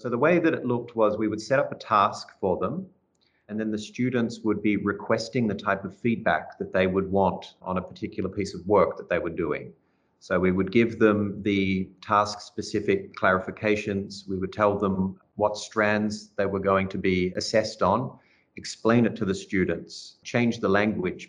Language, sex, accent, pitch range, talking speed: English, male, Australian, 95-110 Hz, 195 wpm